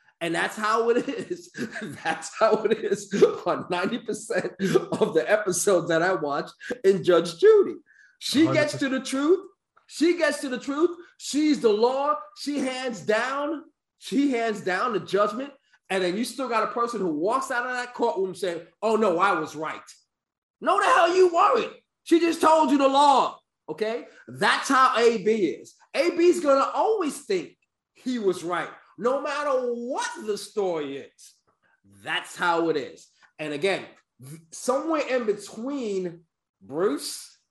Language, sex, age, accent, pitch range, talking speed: English, male, 30-49, American, 195-315 Hz, 160 wpm